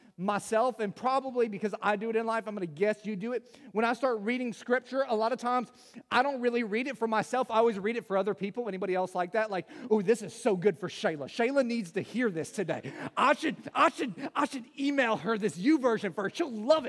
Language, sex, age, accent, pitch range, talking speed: English, male, 30-49, American, 220-280 Hz, 250 wpm